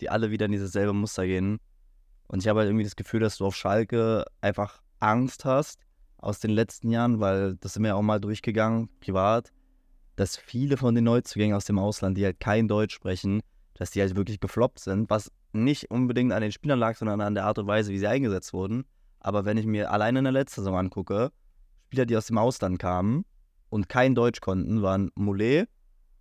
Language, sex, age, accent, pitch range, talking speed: German, male, 20-39, German, 95-115 Hz, 210 wpm